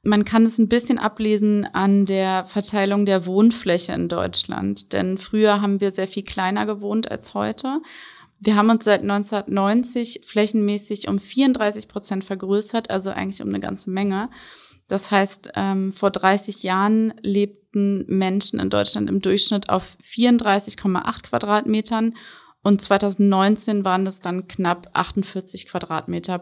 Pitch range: 190-210 Hz